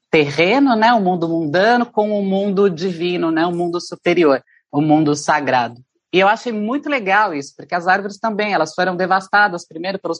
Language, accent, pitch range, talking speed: Portuguese, Brazilian, 165-205 Hz, 205 wpm